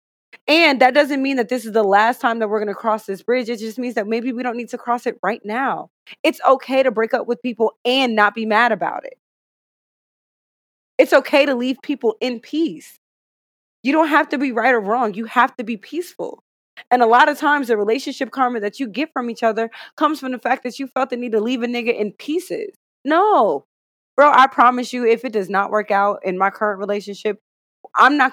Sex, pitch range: female, 205-255 Hz